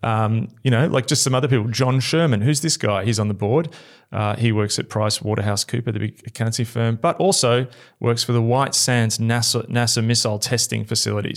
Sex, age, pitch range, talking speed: male, 30-49, 105-130 Hz, 210 wpm